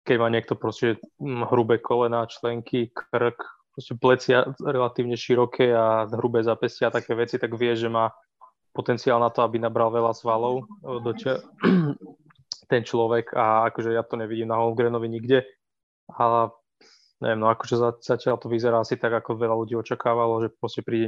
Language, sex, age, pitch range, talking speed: Slovak, male, 20-39, 115-125 Hz, 155 wpm